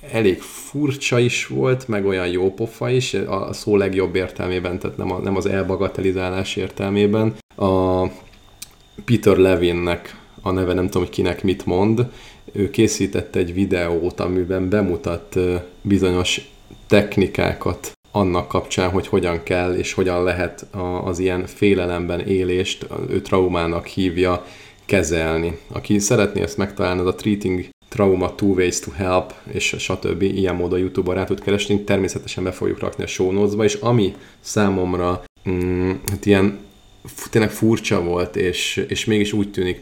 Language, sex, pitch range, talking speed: Hungarian, male, 90-105 Hz, 140 wpm